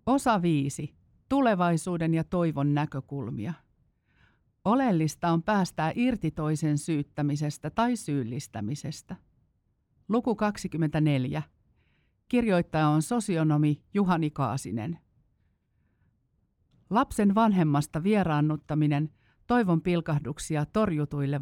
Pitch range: 145-180 Hz